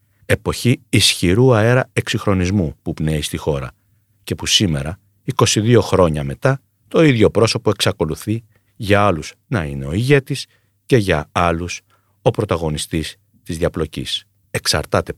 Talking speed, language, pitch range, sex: 125 wpm, Greek, 90-115 Hz, male